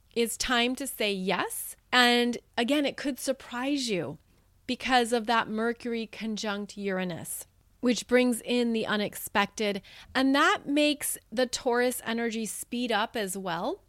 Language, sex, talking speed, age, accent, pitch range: English, female, 140 wpm, 30-49, American, 205-250 Hz